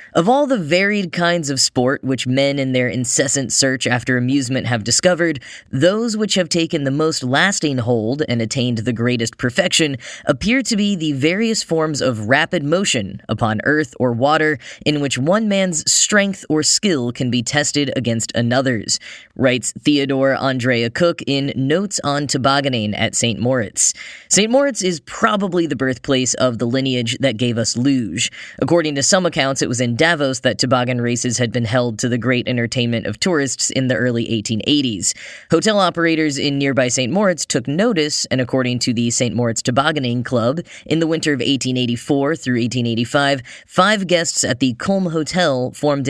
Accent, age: American, 10-29